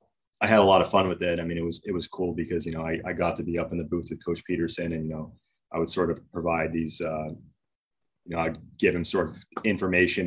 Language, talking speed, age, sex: English, 280 wpm, 30-49, male